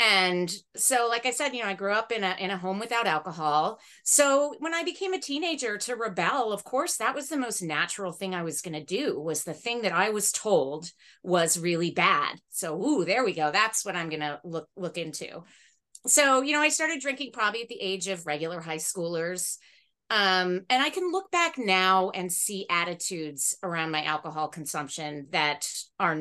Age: 30-49